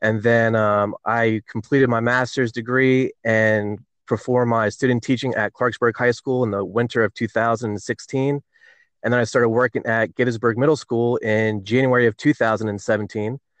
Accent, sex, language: American, male, English